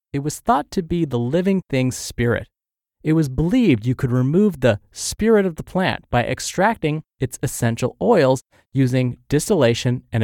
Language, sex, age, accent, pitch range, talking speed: English, male, 30-49, American, 115-155 Hz, 165 wpm